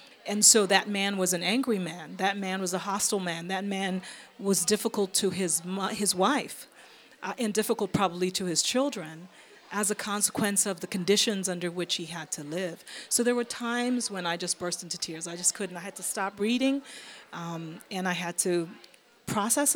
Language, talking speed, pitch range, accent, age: English, 200 wpm, 180-215 Hz, American, 40-59